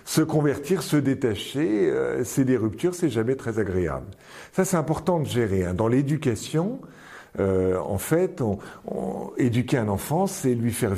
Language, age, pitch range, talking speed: French, 50-69, 105-175 Hz, 170 wpm